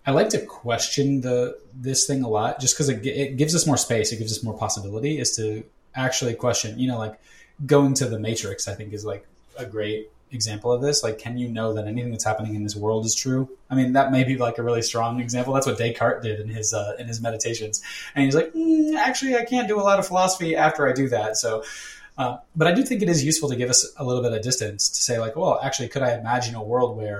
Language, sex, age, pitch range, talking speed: English, male, 20-39, 110-140 Hz, 265 wpm